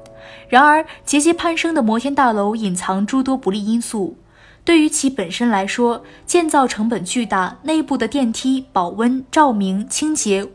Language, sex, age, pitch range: Chinese, female, 20-39, 200-270 Hz